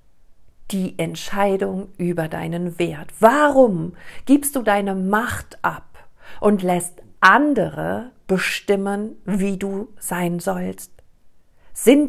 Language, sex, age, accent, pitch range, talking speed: German, female, 50-69, German, 180-245 Hz, 100 wpm